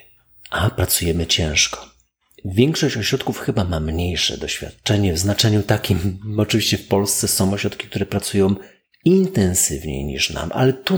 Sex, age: male, 40-59